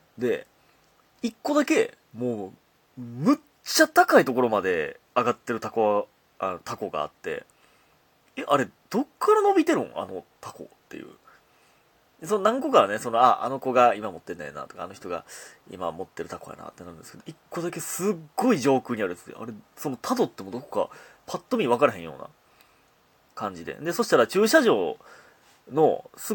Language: Japanese